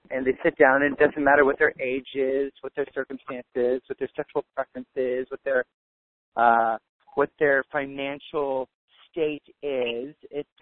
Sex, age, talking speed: male, 40-59, 165 wpm